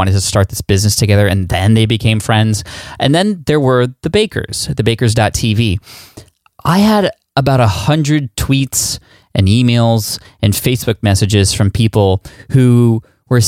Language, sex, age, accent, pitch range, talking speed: English, male, 20-39, American, 105-130 Hz, 150 wpm